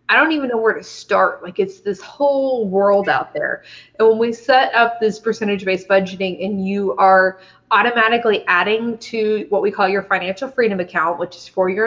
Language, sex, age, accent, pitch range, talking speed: English, female, 20-39, American, 190-235 Hz, 200 wpm